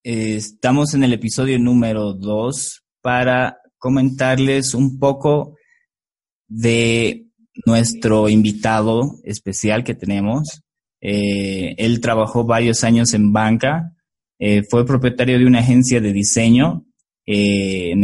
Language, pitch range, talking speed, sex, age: Spanish, 105-125 Hz, 115 wpm, male, 20-39